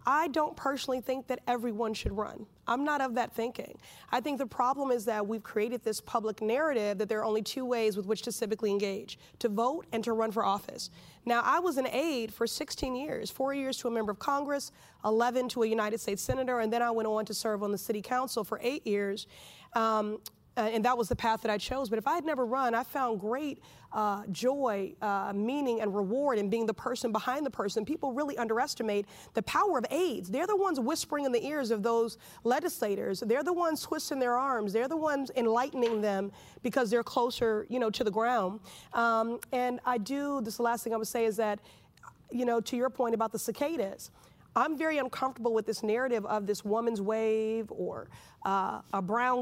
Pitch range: 220-265 Hz